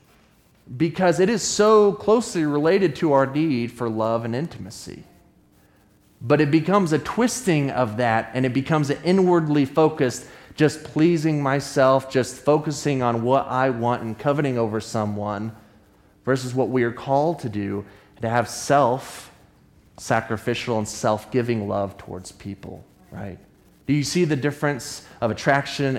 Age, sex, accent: 30-49, male, American